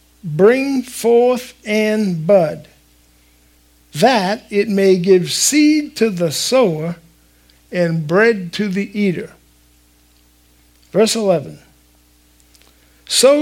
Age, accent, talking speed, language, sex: 60-79, American, 90 wpm, English, male